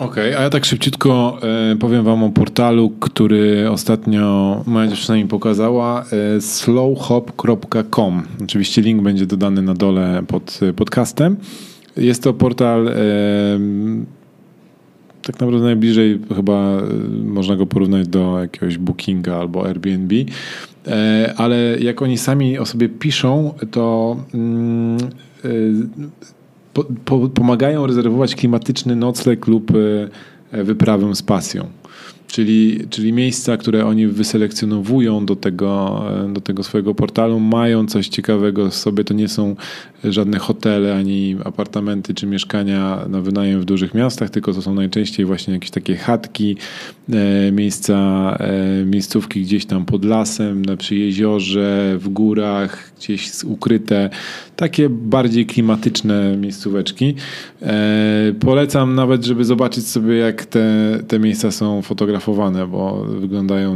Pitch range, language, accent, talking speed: 100-120 Hz, Polish, native, 115 wpm